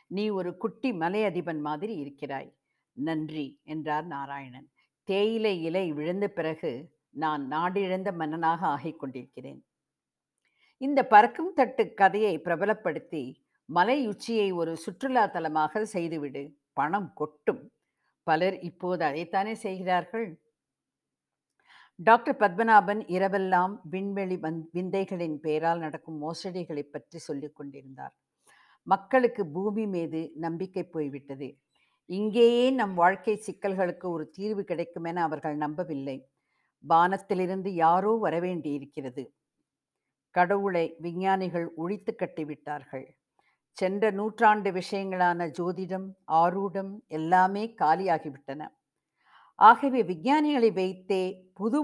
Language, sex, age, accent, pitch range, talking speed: Tamil, female, 50-69, native, 155-205 Hz, 95 wpm